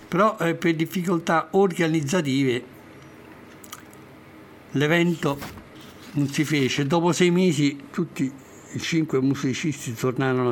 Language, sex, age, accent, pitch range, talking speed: Italian, male, 60-79, native, 130-165 Hz, 95 wpm